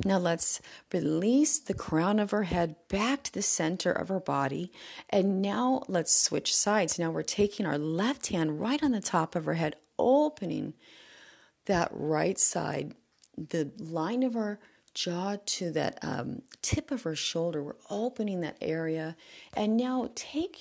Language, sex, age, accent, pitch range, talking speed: English, female, 40-59, American, 160-215 Hz, 165 wpm